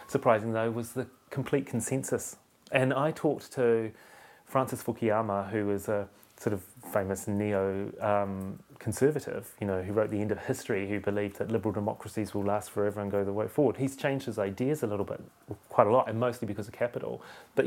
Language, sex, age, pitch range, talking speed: English, male, 30-49, 105-130 Hz, 195 wpm